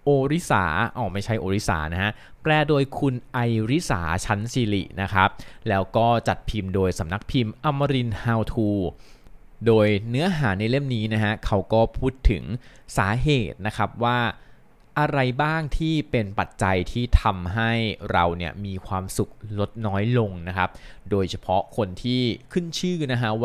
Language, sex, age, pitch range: Thai, male, 20-39, 100-130 Hz